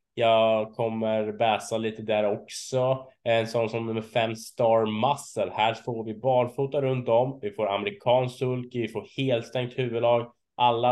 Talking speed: 160 wpm